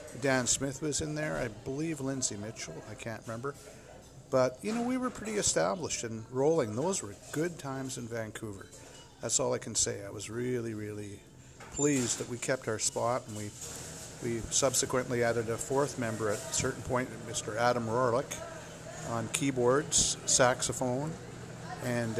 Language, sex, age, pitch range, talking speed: English, male, 50-69, 110-135 Hz, 165 wpm